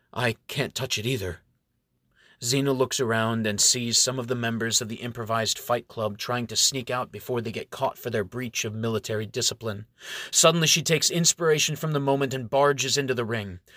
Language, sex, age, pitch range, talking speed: English, male, 30-49, 110-140 Hz, 195 wpm